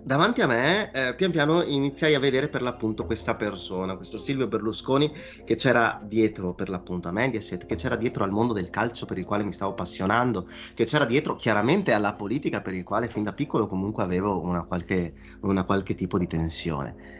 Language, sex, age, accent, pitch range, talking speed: Italian, male, 30-49, native, 90-135 Hz, 200 wpm